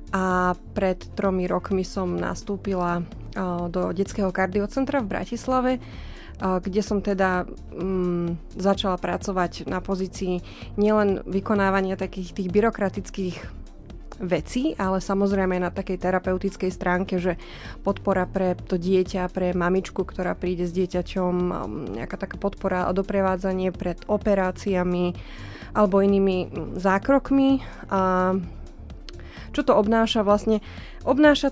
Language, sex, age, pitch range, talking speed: Slovak, female, 20-39, 185-205 Hz, 110 wpm